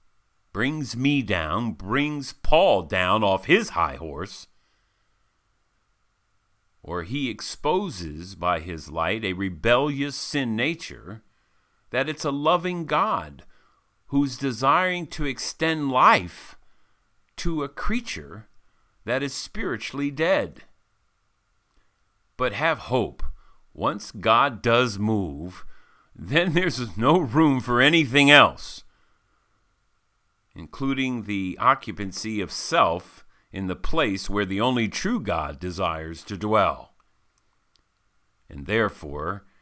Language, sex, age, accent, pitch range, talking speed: English, male, 50-69, American, 95-140 Hz, 105 wpm